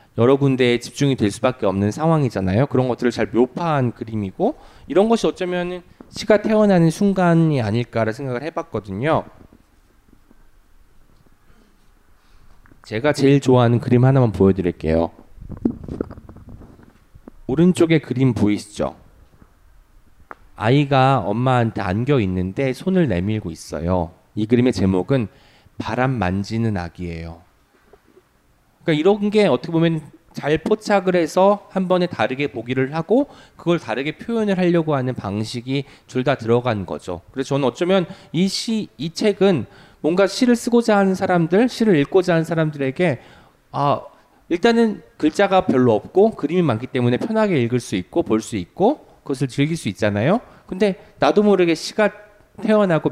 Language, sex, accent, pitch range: Korean, male, native, 110-180 Hz